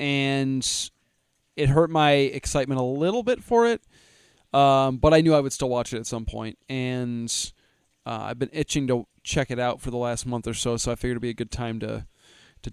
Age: 20-39